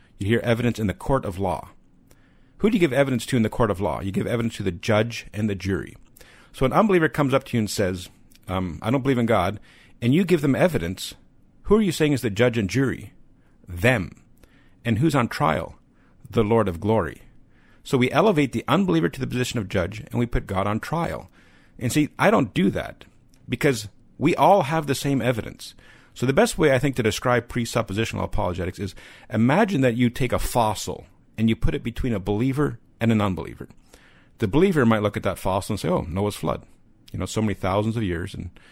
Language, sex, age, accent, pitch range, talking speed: English, male, 50-69, American, 105-135 Hz, 220 wpm